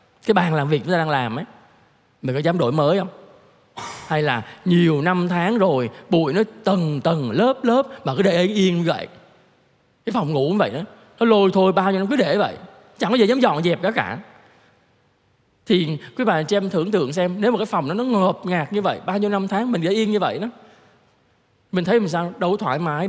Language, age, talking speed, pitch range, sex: Vietnamese, 20-39, 235 wpm, 150-200 Hz, male